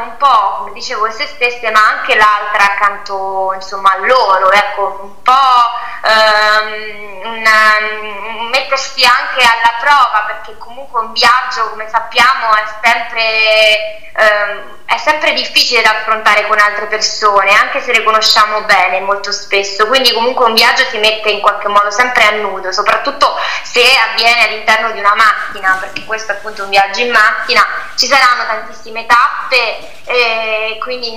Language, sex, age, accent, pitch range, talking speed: Italian, female, 20-39, native, 205-240 Hz, 150 wpm